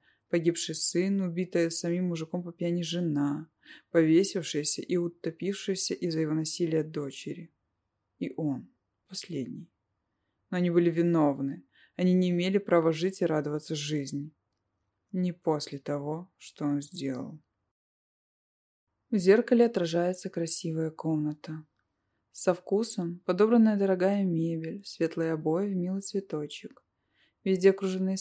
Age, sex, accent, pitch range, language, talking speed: 20-39, female, native, 155-185 Hz, Russian, 110 wpm